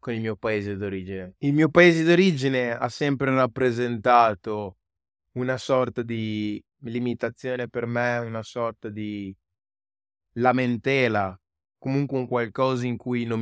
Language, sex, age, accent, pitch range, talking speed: Italian, male, 20-39, native, 105-125 Hz, 125 wpm